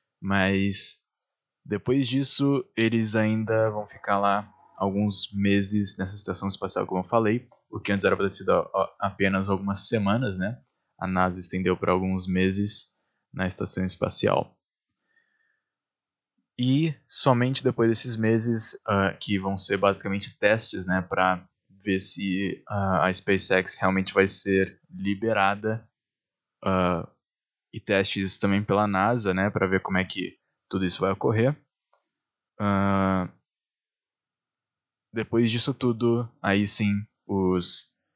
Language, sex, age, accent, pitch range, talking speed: Portuguese, male, 20-39, Brazilian, 95-115 Hz, 125 wpm